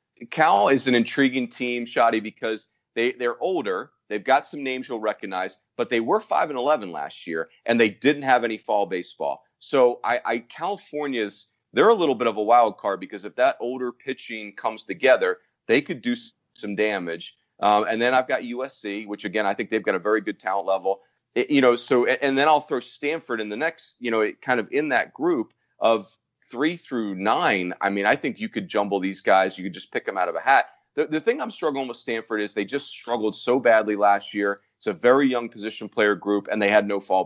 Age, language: 40-59, English